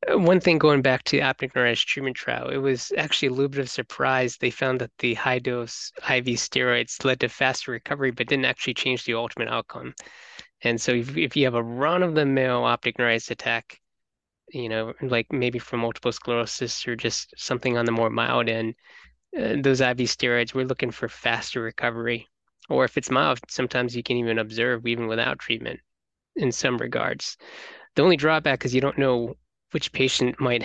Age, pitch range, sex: 20-39, 120-135 Hz, male